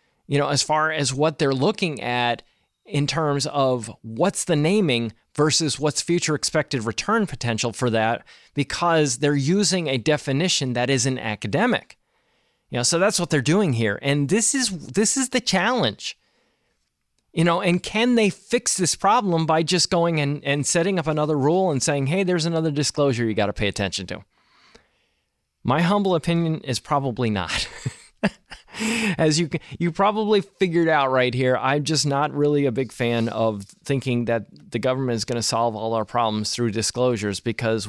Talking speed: 175 wpm